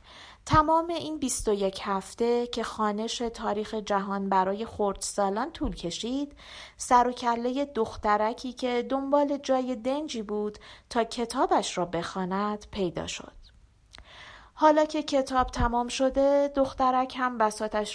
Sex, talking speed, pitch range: female, 120 wpm, 200-260 Hz